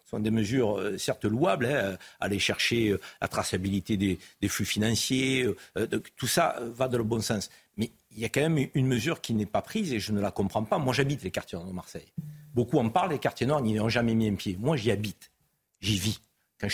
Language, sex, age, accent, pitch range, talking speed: French, male, 50-69, French, 110-145 Hz, 245 wpm